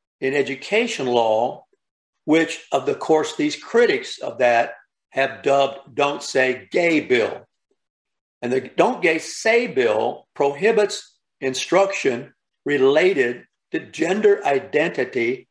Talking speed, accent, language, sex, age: 110 wpm, American, English, male, 60-79